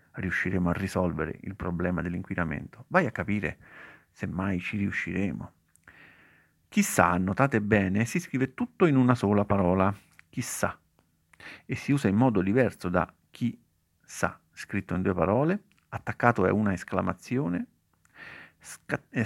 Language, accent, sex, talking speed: Italian, native, male, 130 wpm